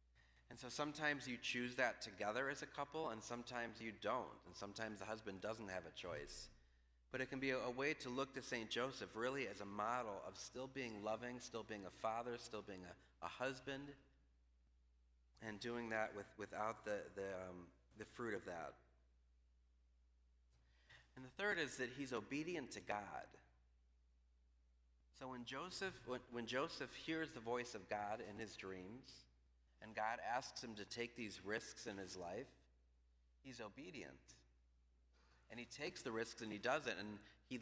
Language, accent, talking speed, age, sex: English, American, 175 wpm, 30-49, male